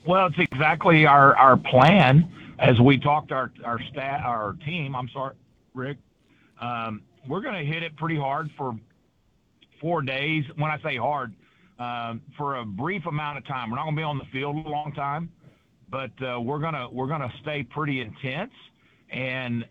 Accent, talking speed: American, 175 wpm